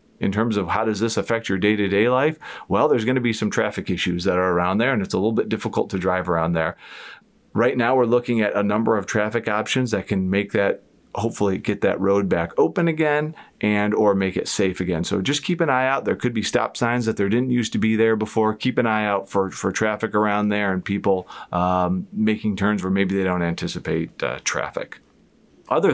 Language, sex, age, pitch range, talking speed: English, male, 40-59, 95-110 Hz, 230 wpm